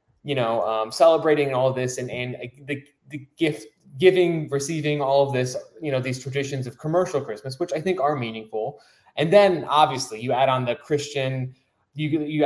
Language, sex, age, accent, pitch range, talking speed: English, male, 20-39, American, 120-145 Hz, 190 wpm